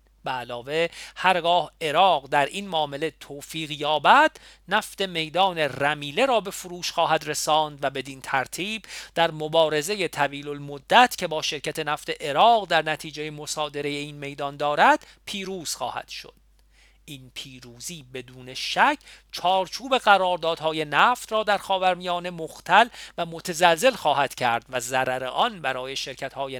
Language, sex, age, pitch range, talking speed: Persian, male, 40-59, 140-185 Hz, 125 wpm